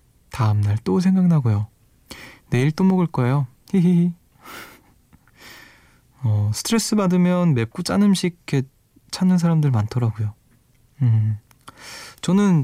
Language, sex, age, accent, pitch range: Korean, male, 20-39, native, 120-160 Hz